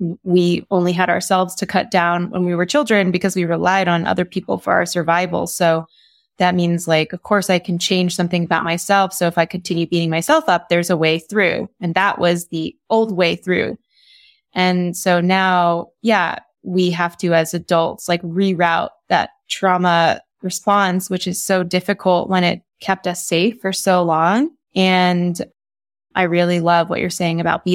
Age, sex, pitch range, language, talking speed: 20-39, female, 175-195 Hz, English, 185 wpm